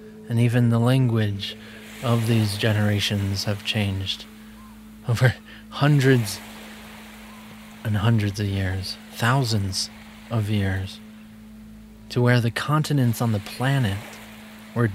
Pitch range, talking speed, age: 105-125 Hz, 105 wpm, 30-49